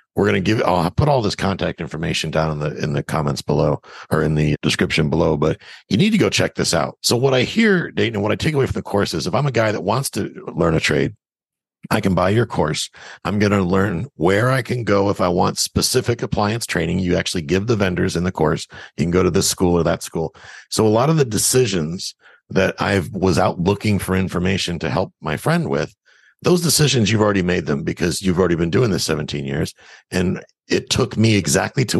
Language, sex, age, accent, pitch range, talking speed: English, male, 50-69, American, 90-120 Hz, 240 wpm